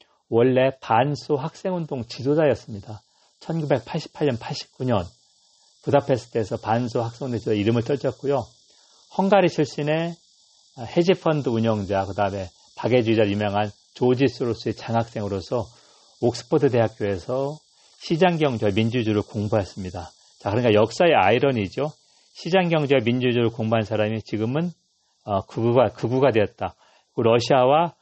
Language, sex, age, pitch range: Korean, male, 40-59, 110-150 Hz